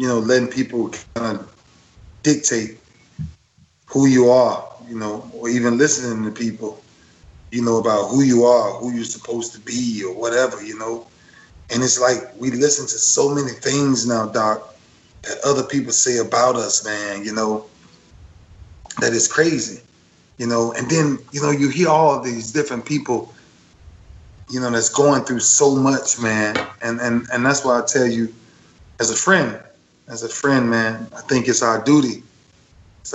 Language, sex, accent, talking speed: English, male, American, 175 wpm